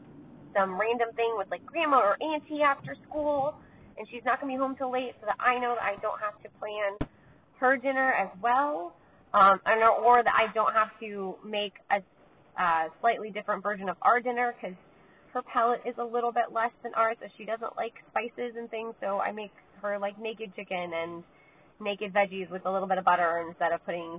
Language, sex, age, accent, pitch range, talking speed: English, female, 20-39, American, 195-265 Hz, 215 wpm